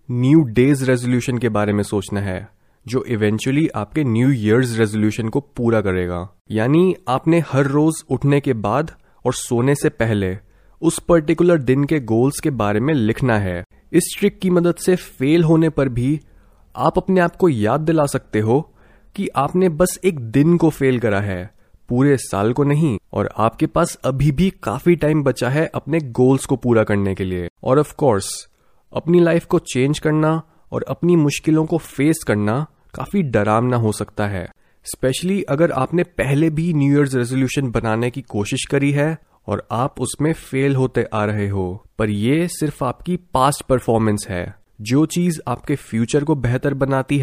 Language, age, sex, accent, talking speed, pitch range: Hindi, 20-39, male, native, 175 wpm, 110-155 Hz